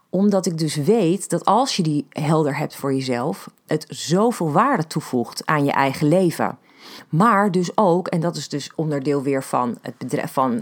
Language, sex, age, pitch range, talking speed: Dutch, female, 40-59, 150-205 Hz, 185 wpm